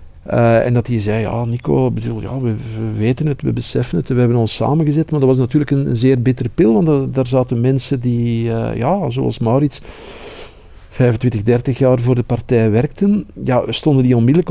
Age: 50-69